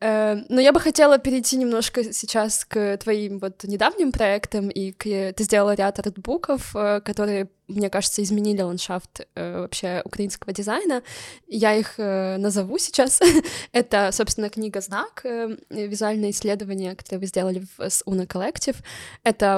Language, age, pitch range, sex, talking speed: Ukrainian, 20-39, 195-235 Hz, female, 125 wpm